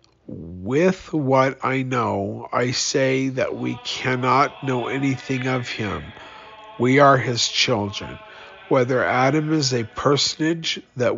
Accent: American